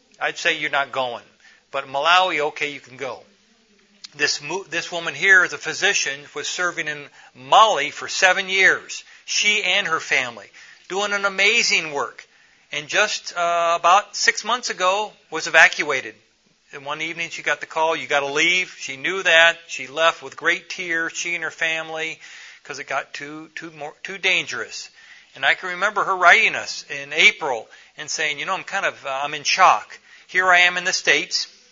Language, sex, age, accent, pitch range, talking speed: English, male, 50-69, American, 150-185 Hz, 185 wpm